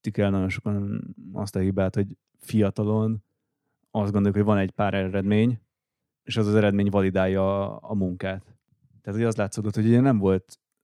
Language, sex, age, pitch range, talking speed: Hungarian, male, 30-49, 100-110 Hz, 175 wpm